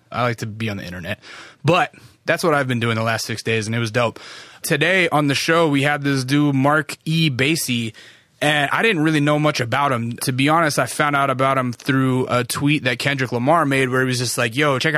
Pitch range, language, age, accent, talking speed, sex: 120-150 Hz, English, 20-39, American, 250 wpm, male